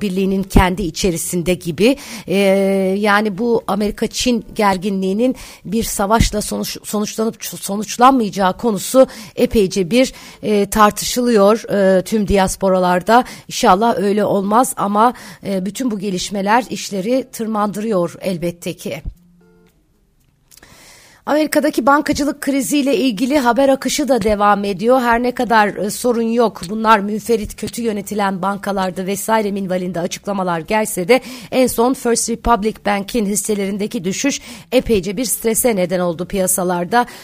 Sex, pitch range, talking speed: female, 190-230 Hz, 120 wpm